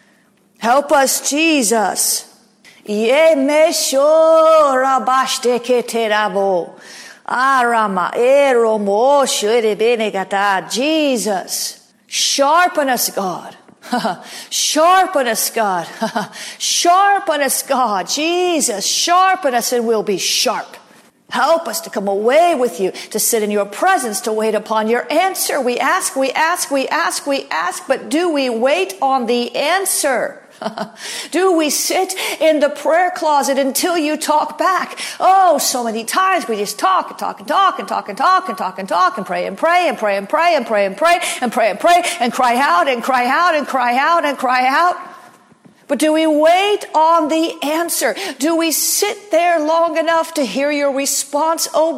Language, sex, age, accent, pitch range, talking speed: English, female, 50-69, American, 240-330 Hz, 150 wpm